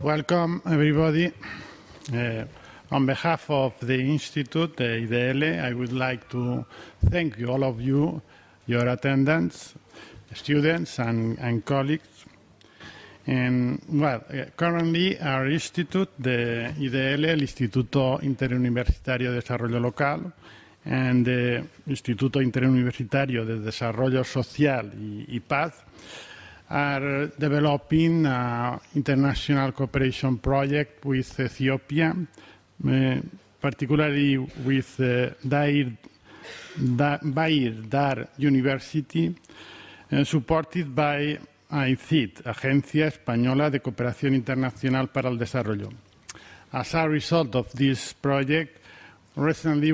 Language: Spanish